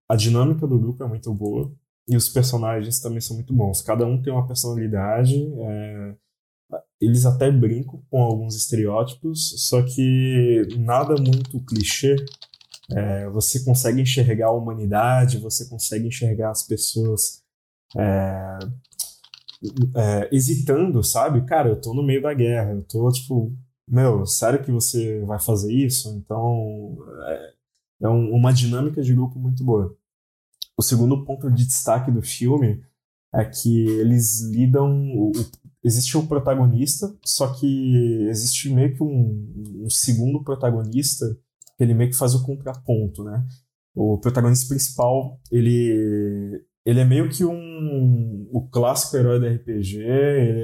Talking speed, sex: 140 wpm, male